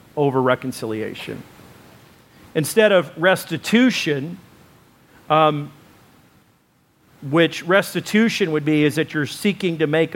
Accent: American